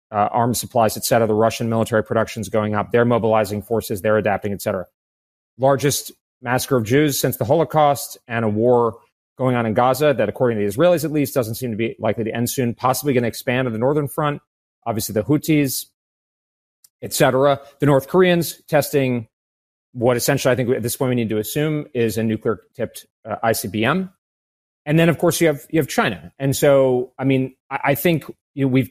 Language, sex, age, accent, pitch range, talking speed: English, male, 30-49, American, 110-140 Hz, 205 wpm